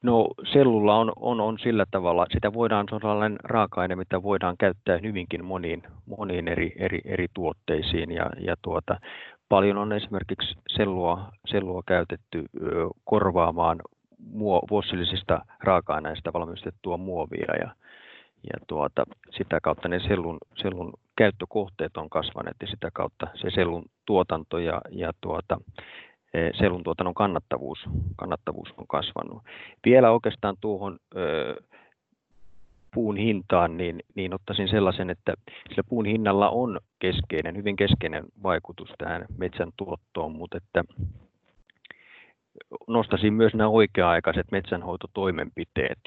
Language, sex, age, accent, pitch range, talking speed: Finnish, male, 30-49, native, 90-105 Hz, 115 wpm